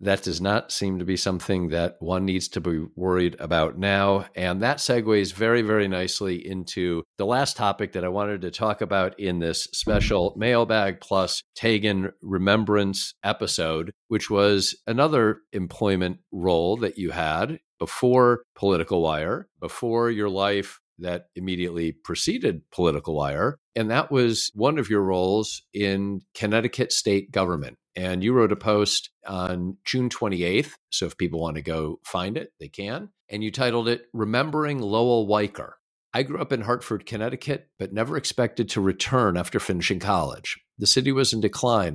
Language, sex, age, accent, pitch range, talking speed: English, male, 50-69, American, 90-115 Hz, 160 wpm